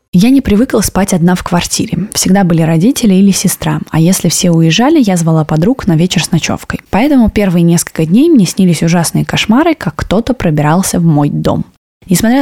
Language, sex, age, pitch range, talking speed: Russian, female, 20-39, 165-220 Hz, 185 wpm